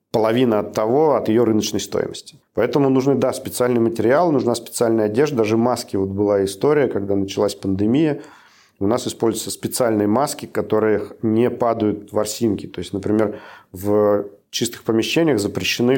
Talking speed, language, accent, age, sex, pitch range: 145 wpm, Russian, native, 40-59, male, 100-115 Hz